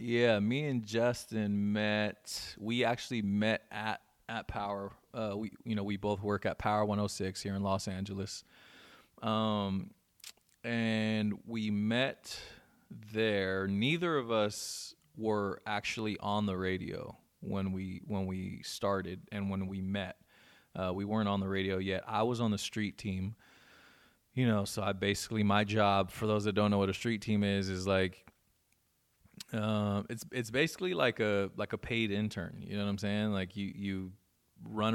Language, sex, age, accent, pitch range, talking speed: English, male, 20-39, American, 95-110 Hz, 170 wpm